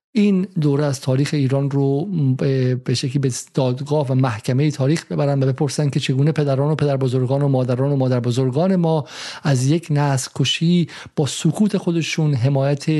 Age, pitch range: 50-69, 130-155 Hz